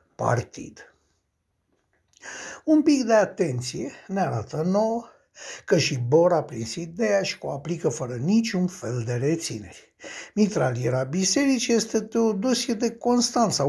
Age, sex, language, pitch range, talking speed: 60-79, male, Romanian, 130-195 Hz, 125 wpm